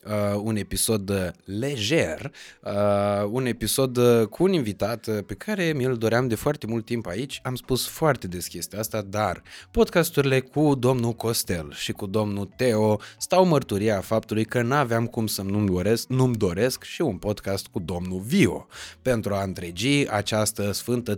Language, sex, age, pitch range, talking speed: Romanian, male, 20-39, 100-130 Hz, 160 wpm